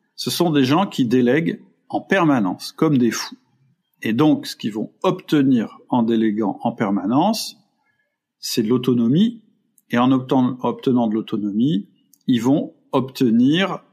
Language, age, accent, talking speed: French, 50-69, French, 140 wpm